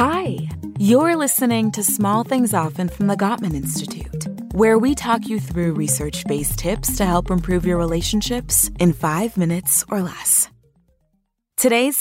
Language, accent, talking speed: English, American, 145 wpm